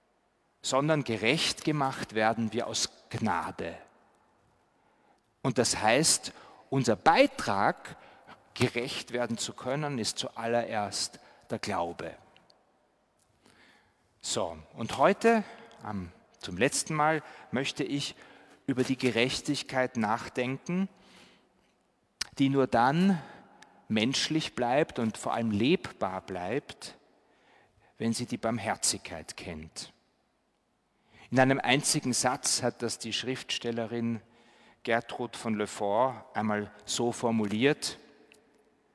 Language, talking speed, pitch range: German, 95 wpm, 115-145 Hz